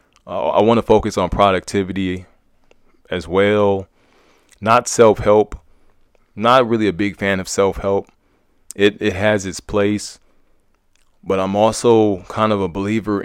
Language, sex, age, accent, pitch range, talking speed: English, male, 20-39, American, 85-100 Hz, 140 wpm